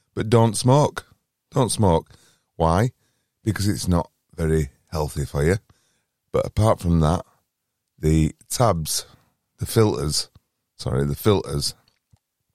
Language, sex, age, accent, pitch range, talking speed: English, male, 30-49, British, 80-100 Hz, 115 wpm